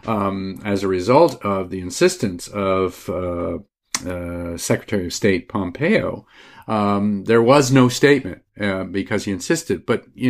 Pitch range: 100-120 Hz